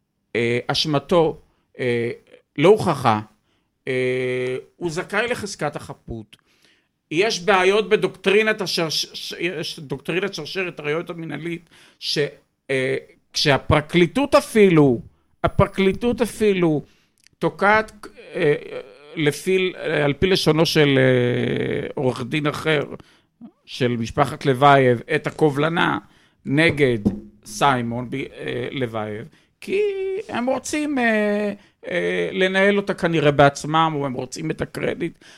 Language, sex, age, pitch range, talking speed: Hebrew, male, 50-69, 125-185 Hz, 100 wpm